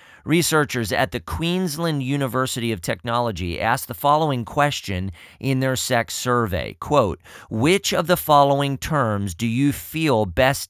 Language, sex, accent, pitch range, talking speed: English, male, American, 105-145 Hz, 140 wpm